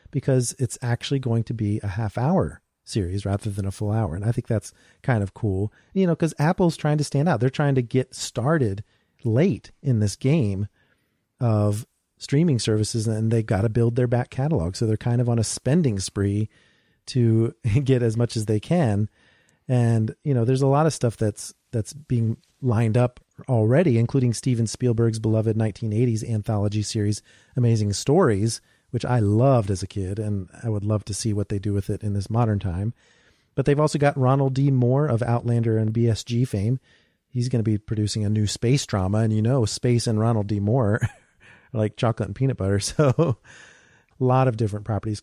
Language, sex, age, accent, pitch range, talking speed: English, male, 40-59, American, 105-130 Hz, 200 wpm